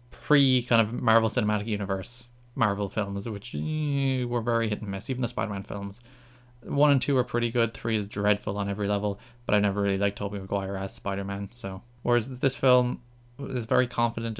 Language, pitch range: English, 105-125 Hz